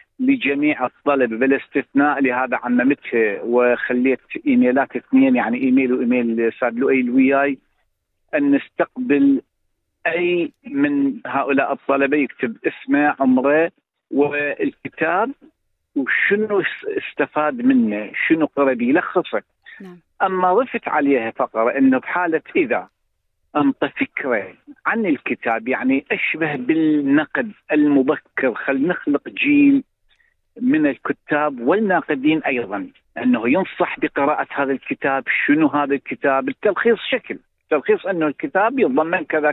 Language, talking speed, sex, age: Arabic, 105 wpm, male, 50-69